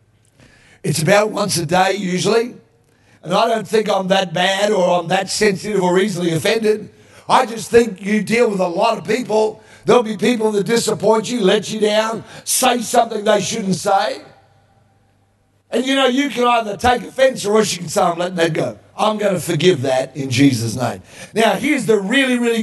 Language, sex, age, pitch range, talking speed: English, male, 50-69, 185-235 Hz, 195 wpm